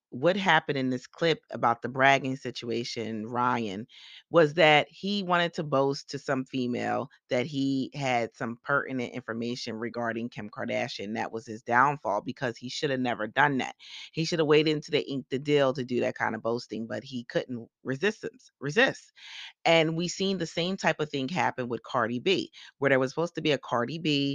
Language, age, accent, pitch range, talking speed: English, 30-49, American, 125-155 Hz, 195 wpm